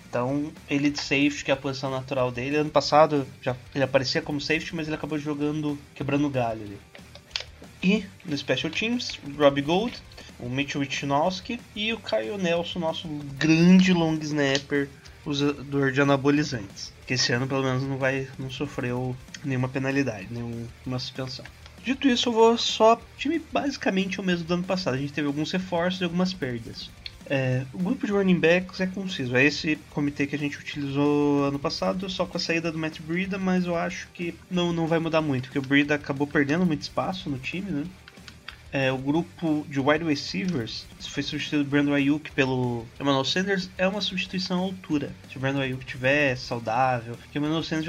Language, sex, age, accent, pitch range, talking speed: Portuguese, male, 20-39, Brazilian, 135-170 Hz, 190 wpm